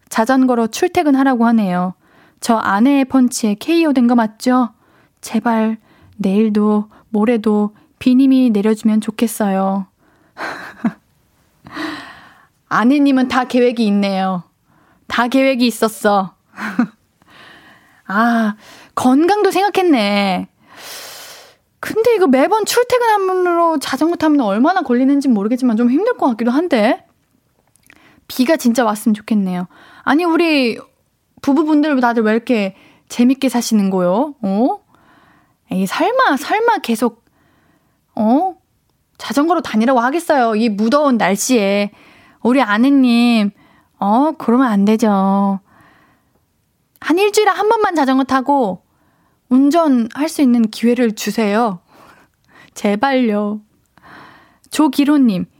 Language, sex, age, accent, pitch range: Korean, female, 20-39, native, 215-280 Hz